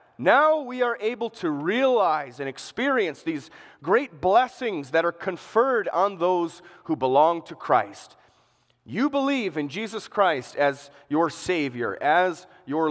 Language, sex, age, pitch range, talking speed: English, male, 30-49, 125-195 Hz, 140 wpm